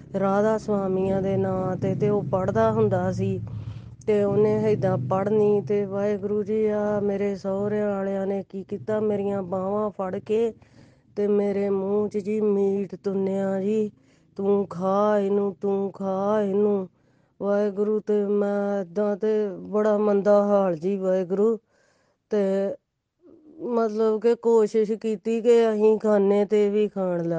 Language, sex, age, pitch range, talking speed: Punjabi, female, 20-39, 195-210 Hz, 90 wpm